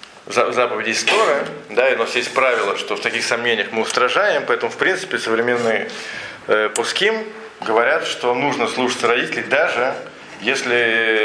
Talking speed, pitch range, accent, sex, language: 140 wpm, 105-125 Hz, native, male, Russian